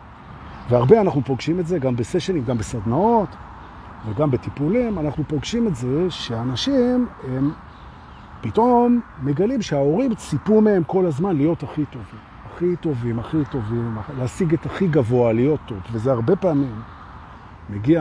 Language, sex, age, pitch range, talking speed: Hebrew, male, 50-69, 105-165 Hz, 115 wpm